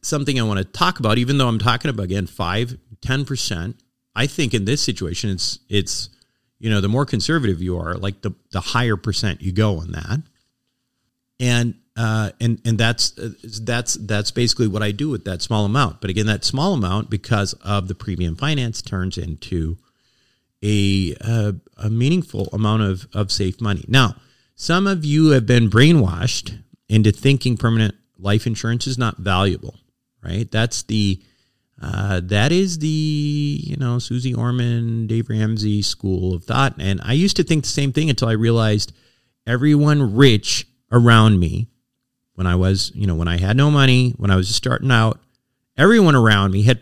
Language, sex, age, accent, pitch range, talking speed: English, male, 40-59, American, 100-130 Hz, 180 wpm